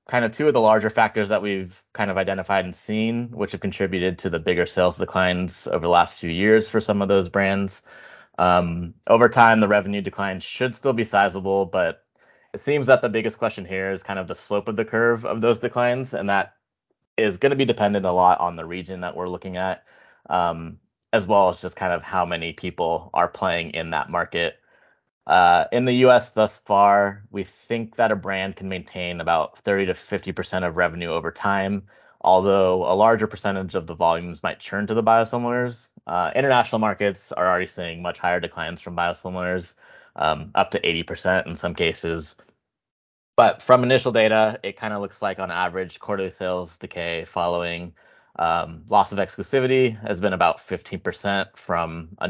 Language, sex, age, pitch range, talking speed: English, male, 20-39, 90-110 Hz, 195 wpm